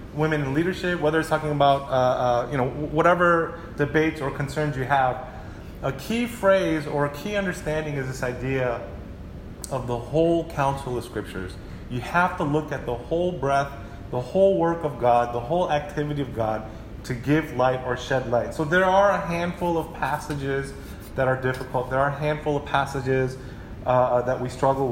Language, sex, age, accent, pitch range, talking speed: English, male, 30-49, American, 125-160 Hz, 185 wpm